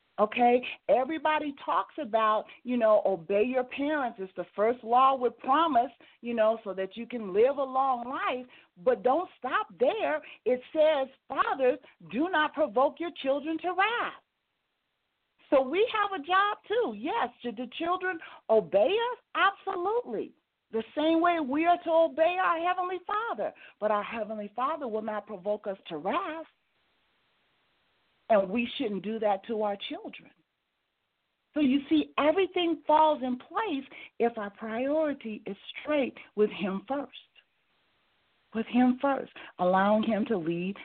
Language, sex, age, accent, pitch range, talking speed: English, female, 40-59, American, 210-310 Hz, 150 wpm